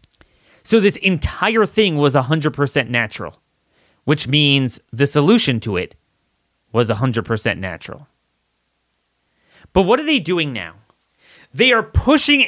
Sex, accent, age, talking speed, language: male, American, 30-49, 120 wpm, English